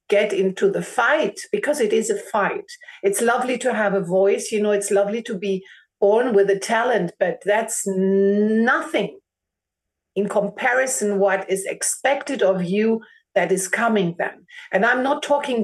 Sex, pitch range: female, 200-250 Hz